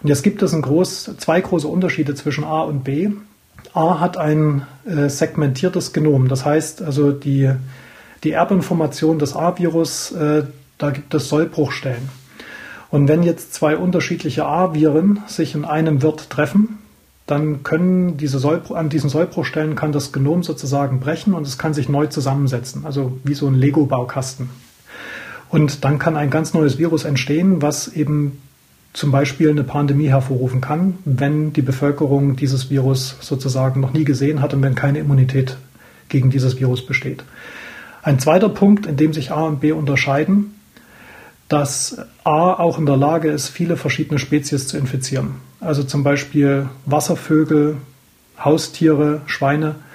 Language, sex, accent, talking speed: German, male, German, 150 wpm